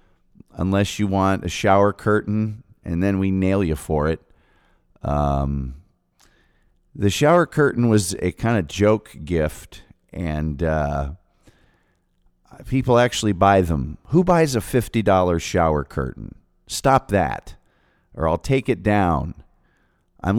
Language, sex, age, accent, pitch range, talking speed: English, male, 40-59, American, 90-110 Hz, 125 wpm